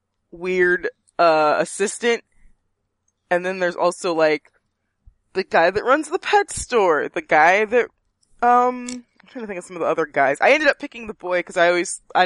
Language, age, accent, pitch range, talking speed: English, 20-39, American, 155-220 Hz, 190 wpm